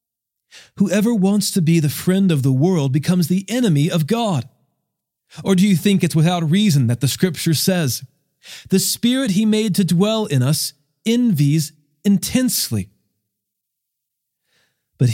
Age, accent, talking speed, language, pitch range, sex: 40-59, American, 145 wpm, English, 125-185 Hz, male